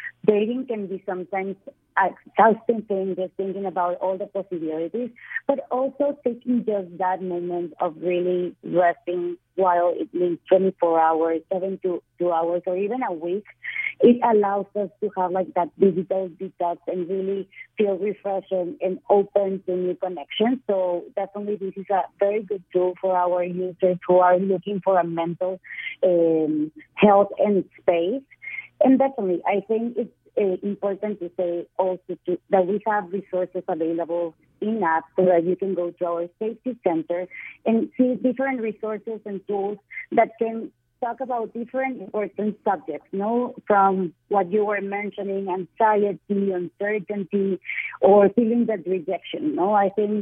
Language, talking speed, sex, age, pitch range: English, 160 wpm, female, 30-49, 180-210 Hz